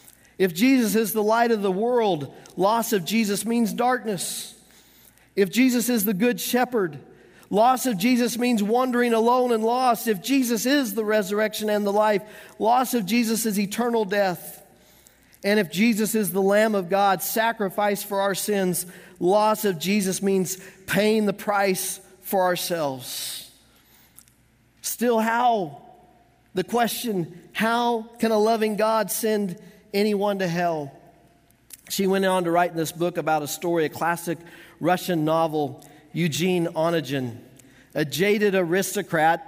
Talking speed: 145 wpm